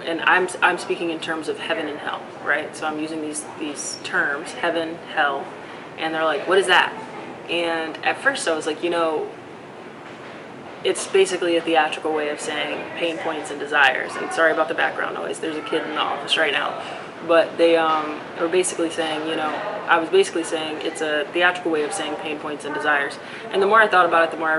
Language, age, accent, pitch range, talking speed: English, 20-39, American, 155-175 Hz, 220 wpm